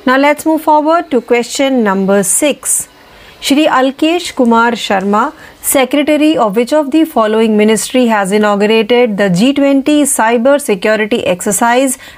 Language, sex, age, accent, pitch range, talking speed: Marathi, female, 30-49, native, 220-280 Hz, 130 wpm